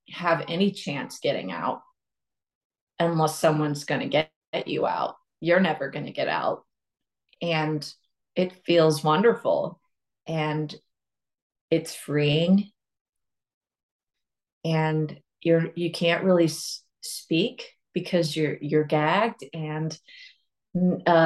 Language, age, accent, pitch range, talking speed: English, 30-49, American, 165-195 Hz, 105 wpm